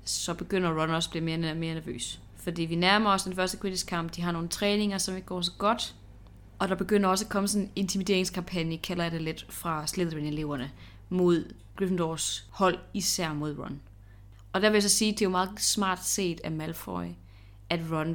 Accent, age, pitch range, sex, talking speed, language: native, 30-49, 150-185 Hz, female, 210 wpm, Danish